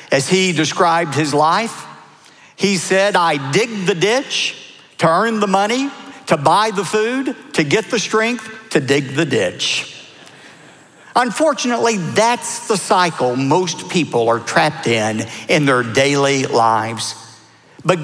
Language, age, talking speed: English, 50-69, 135 wpm